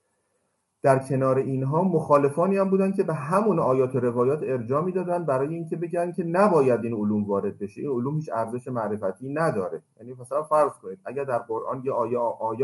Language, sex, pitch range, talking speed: Persian, male, 110-150 Hz, 185 wpm